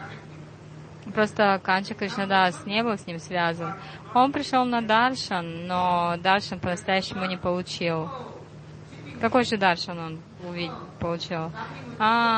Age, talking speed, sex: 20-39, 110 wpm, female